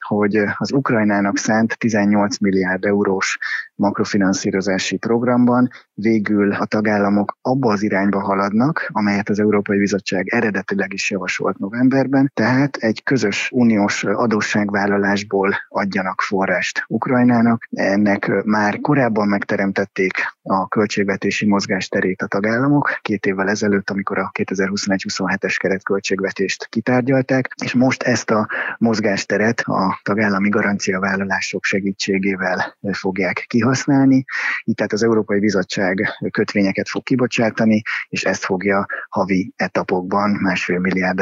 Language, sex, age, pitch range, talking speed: Hungarian, male, 20-39, 95-115 Hz, 115 wpm